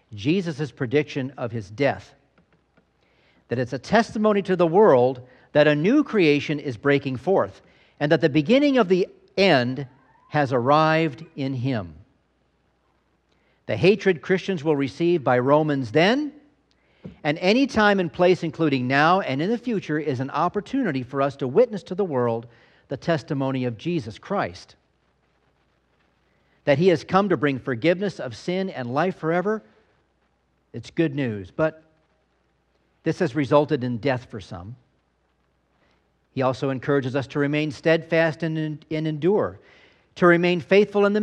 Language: English